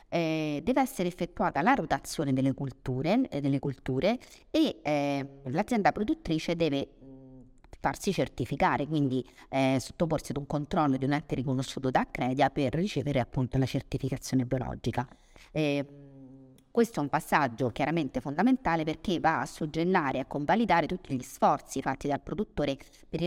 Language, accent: Italian, native